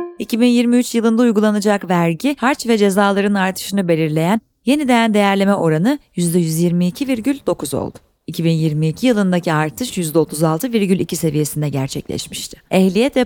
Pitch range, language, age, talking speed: 170-235 Hz, Turkish, 30-49, 100 wpm